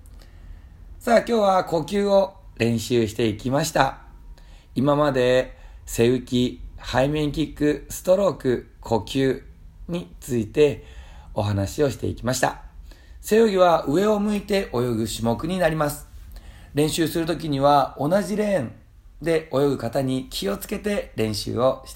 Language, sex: Japanese, male